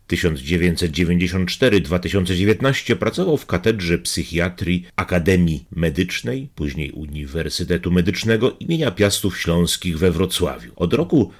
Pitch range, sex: 85-100 Hz, male